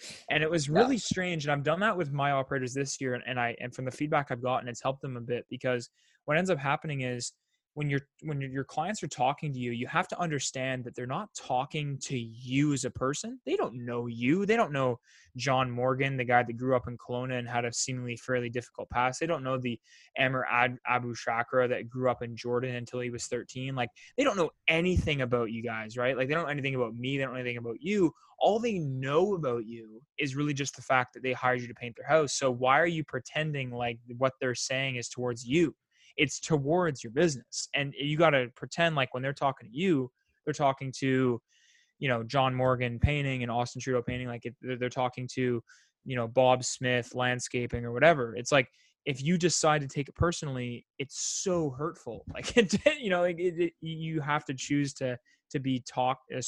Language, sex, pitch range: English, male, 125-150 Hz